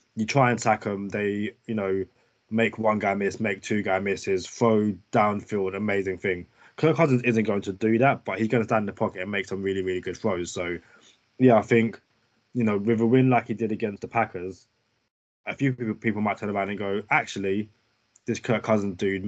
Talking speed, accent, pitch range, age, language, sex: 220 wpm, British, 95-115 Hz, 20-39, English, male